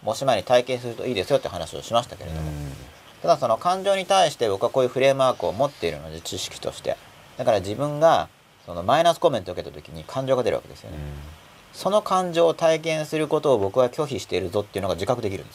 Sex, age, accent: male, 40-59, native